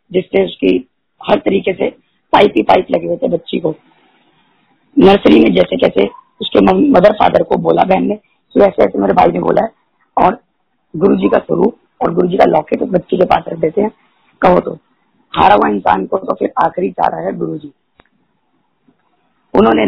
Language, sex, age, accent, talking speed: Hindi, female, 30-49, native, 185 wpm